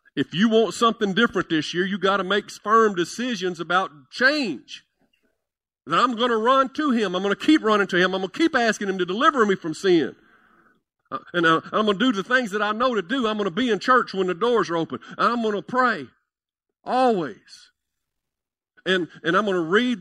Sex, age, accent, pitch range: male, 50-69, American, 150-230 Hz